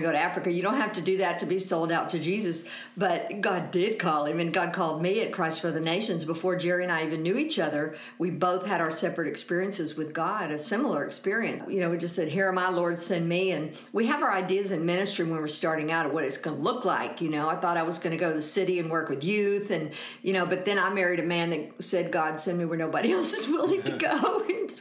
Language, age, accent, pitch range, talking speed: English, 50-69, American, 165-195 Hz, 280 wpm